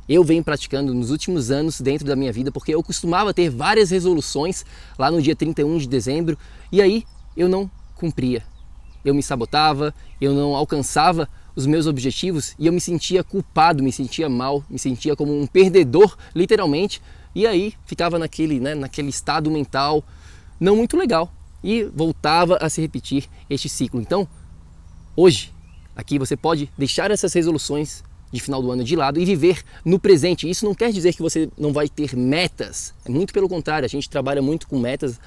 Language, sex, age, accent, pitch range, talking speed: Portuguese, male, 20-39, Brazilian, 130-170 Hz, 180 wpm